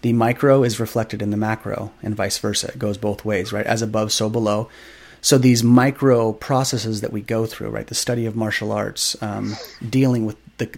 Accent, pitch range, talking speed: American, 110-125 Hz, 205 wpm